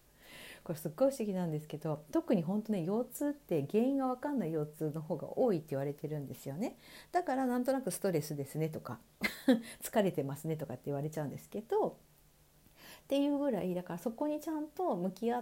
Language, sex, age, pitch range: Japanese, female, 50-69, 160-265 Hz